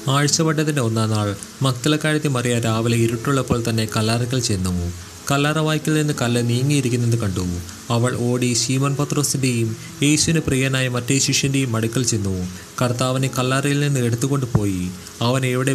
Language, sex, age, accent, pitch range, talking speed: Malayalam, male, 30-49, native, 110-140 Hz, 120 wpm